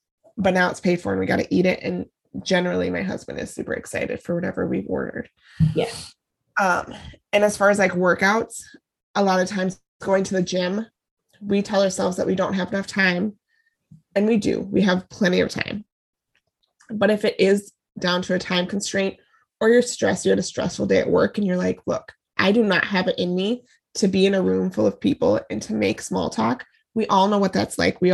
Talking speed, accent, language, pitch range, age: 220 wpm, American, English, 185-240 Hz, 20-39